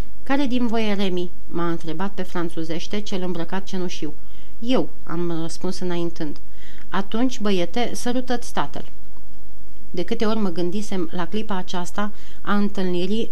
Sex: female